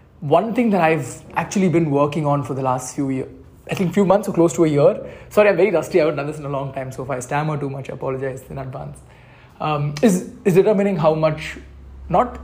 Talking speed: 255 wpm